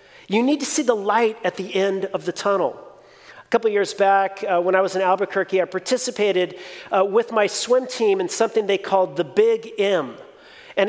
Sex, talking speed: male, 205 wpm